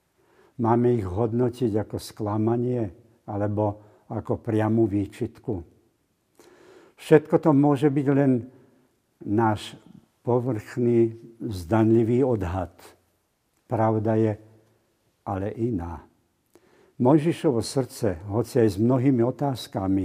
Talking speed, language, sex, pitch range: 85 wpm, Slovak, male, 105-125 Hz